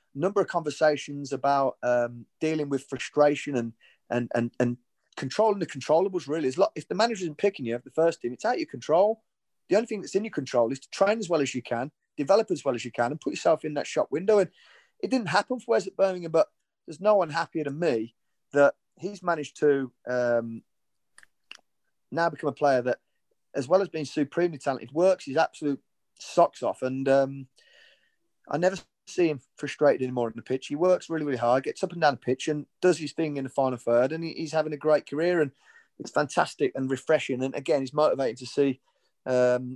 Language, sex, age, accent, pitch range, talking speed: English, male, 30-49, British, 130-180 Hz, 220 wpm